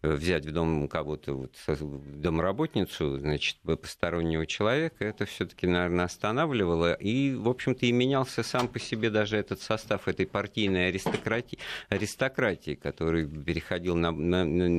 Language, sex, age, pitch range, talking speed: Russian, male, 50-69, 80-105 Hz, 130 wpm